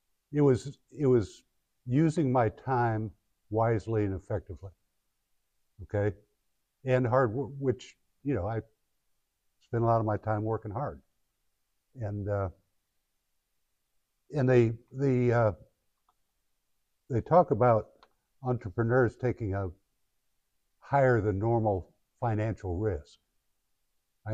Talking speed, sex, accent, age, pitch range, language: 110 wpm, male, American, 60-79, 95-120 Hz, English